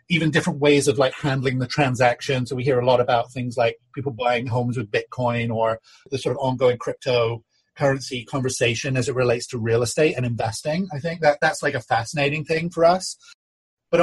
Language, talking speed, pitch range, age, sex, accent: English, 205 wpm, 125-155 Hz, 30-49, male, British